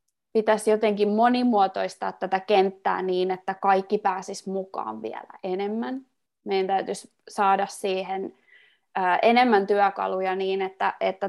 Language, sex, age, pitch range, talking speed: Finnish, female, 20-39, 190-245 Hz, 110 wpm